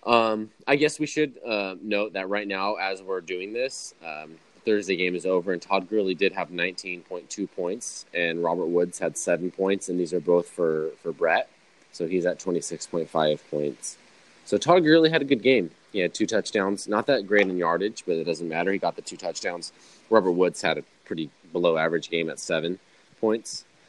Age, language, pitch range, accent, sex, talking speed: 20-39, English, 85-105 Hz, American, male, 200 wpm